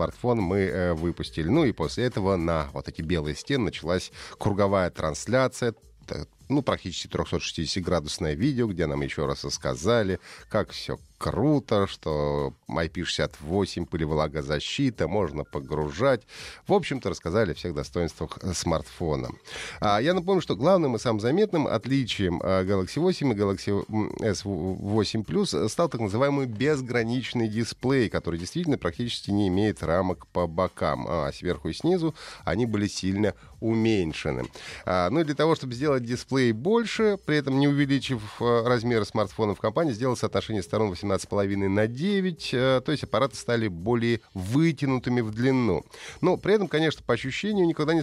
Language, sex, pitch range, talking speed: Russian, male, 95-135 Hz, 140 wpm